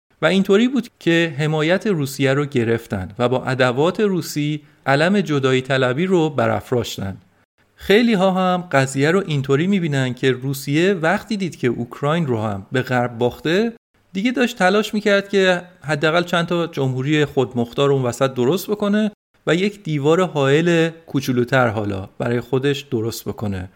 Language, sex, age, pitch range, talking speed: Persian, male, 40-59, 130-185 Hz, 145 wpm